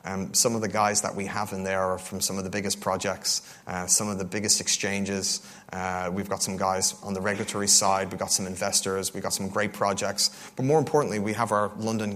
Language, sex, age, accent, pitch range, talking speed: English, male, 30-49, Irish, 95-110 Hz, 235 wpm